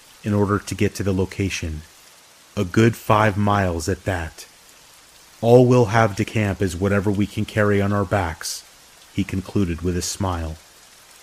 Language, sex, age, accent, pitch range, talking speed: English, male, 30-49, American, 90-105 Hz, 165 wpm